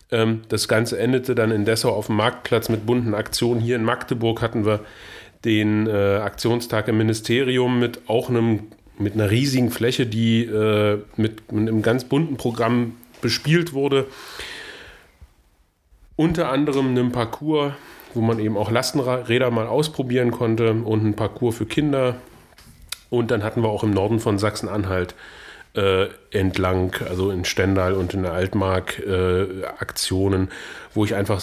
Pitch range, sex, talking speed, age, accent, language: 105-125 Hz, male, 145 wpm, 30-49, German, German